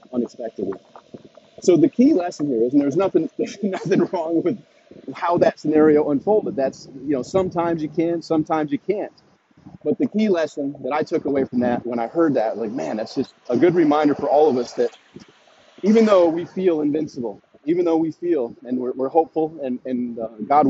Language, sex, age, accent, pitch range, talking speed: English, male, 30-49, American, 140-185 Hz, 200 wpm